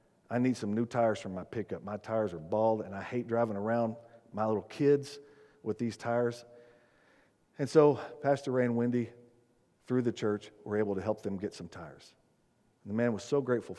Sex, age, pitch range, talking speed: male, 50-69, 115-150 Hz, 195 wpm